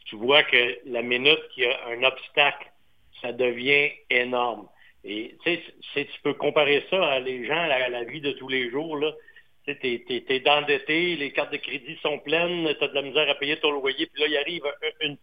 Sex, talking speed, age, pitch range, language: male, 205 wpm, 60-79, 140-180 Hz, French